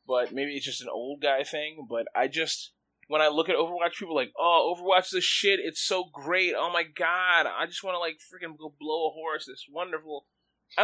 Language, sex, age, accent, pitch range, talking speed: English, male, 20-39, American, 140-180 Hz, 235 wpm